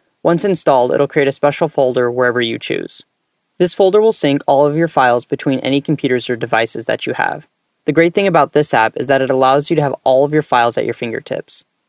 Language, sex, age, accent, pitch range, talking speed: English, male, 10-29, American, 125-155 Hz, 230 wpm